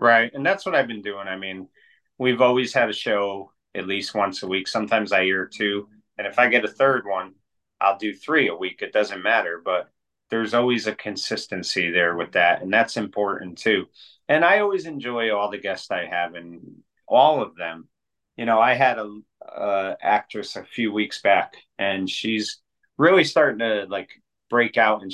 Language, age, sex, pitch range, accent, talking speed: English, 30-49, male, 95-115 Hz, American, 200 wpm